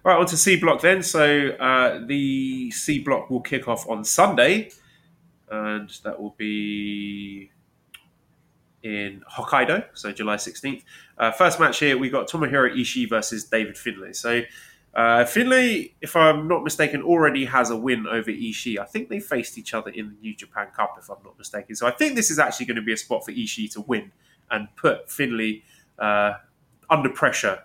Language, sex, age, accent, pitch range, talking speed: English, male, 20-39, British, 105-155 Hz, 180 wpm